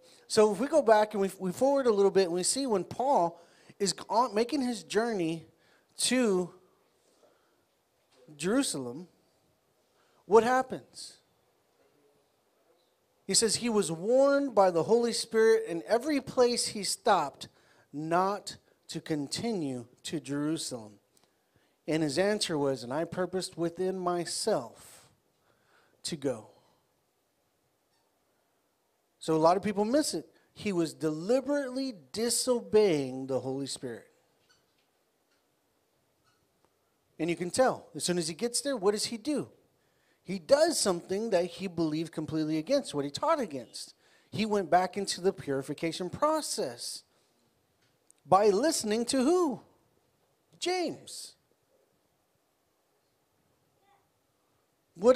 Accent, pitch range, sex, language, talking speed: American, 165-240 Hz, male, English, 115 wpm